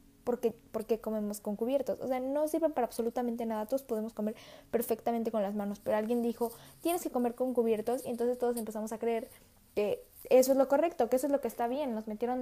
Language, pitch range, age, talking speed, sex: Spanish, 210-260 Hz, 10-29, 225 wpm, female